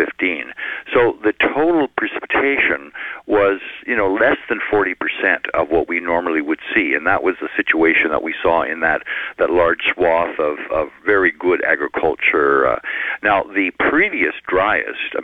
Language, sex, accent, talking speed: English, male, American, 155 wpm